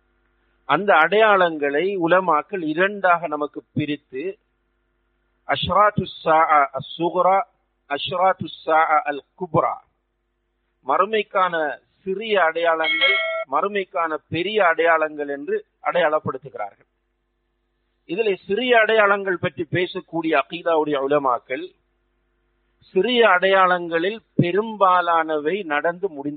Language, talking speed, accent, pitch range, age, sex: English, 75 wpm, Indian, 145-190 Hz, 50-69, male